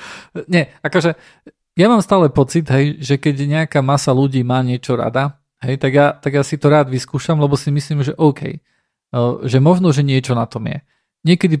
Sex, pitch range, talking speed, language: male, 125-155 Hz, 190 wpm, Slovak